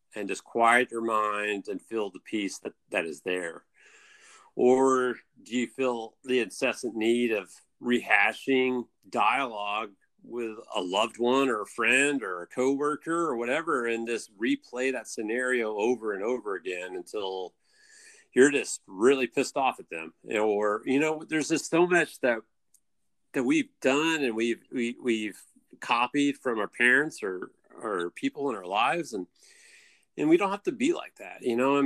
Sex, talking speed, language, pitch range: male, 170 wpm, English, 120-180 Hz